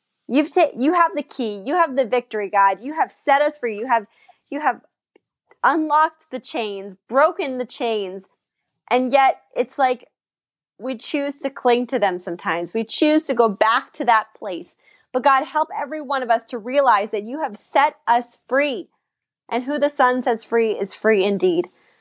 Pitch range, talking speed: 225-295 Hz, 190 wpm